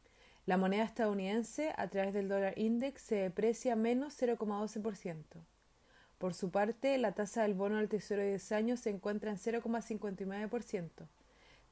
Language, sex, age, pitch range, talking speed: Spanish, female, 30-49, 205-245 Hz, 145 wpm